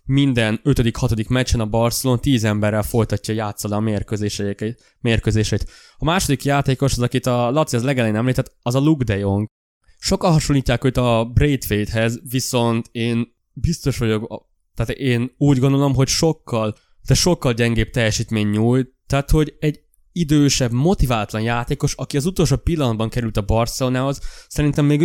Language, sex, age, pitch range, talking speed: Hungarian, male, 20-39, 115-140 Hz, 150 wpm